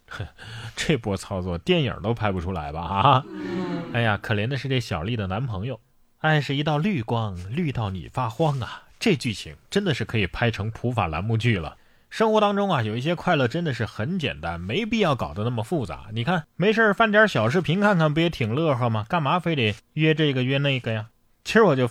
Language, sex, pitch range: Chinese, male, 110-165 Hz